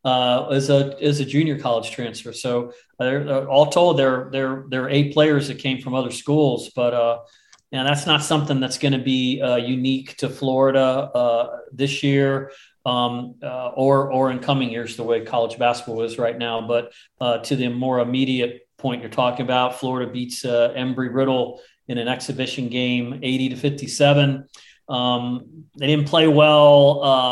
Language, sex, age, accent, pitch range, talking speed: English, male, 40-59, American, 125-145 Hz, 175 wpm